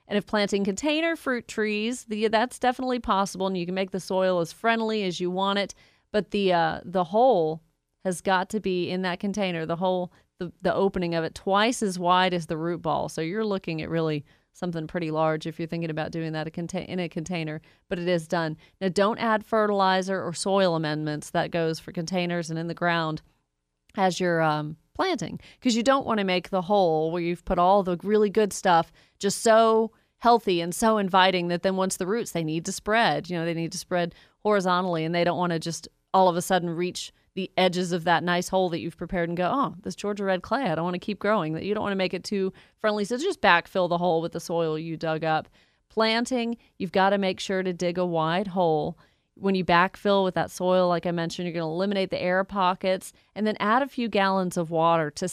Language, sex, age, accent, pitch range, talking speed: English, female, 30-49, American, 170-200 Hz, 235 wpm